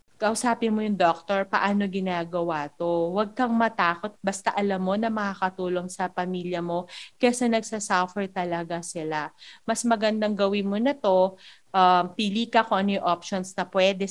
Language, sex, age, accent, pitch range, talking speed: Filipino, female, 40-59, native, 180-210 Hz, 160 wpm